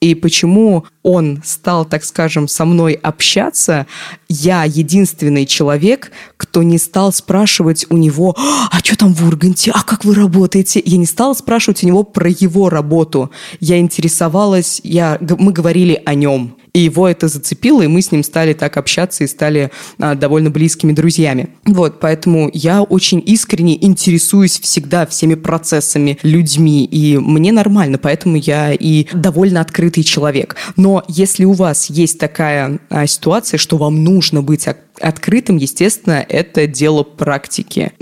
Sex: female